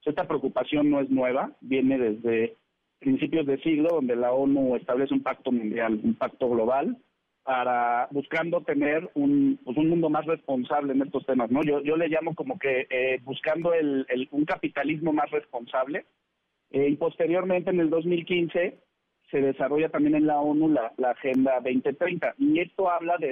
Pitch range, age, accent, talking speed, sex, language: 135-170 Hz, 40-59, Mexican, 170 wpm, male, Spanish